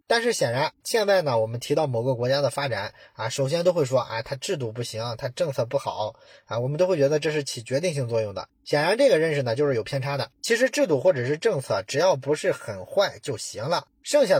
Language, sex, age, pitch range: Chinese, male, 20-39, 120-175 Hz